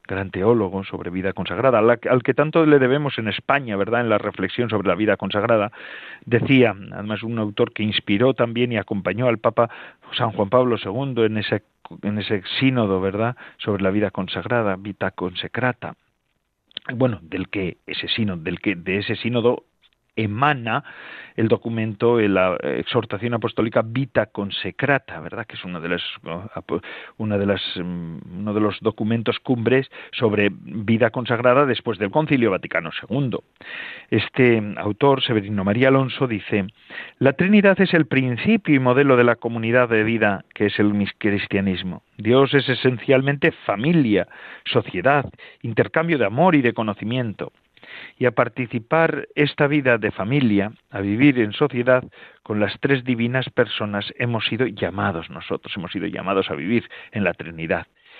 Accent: Spanish